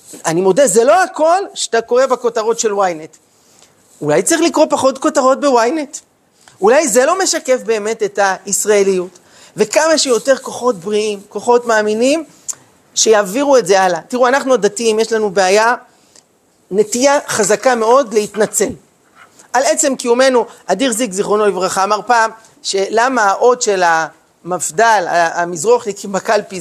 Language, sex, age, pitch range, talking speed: Hebrew, male, 40-59, 205-285 Hz, 130 wpm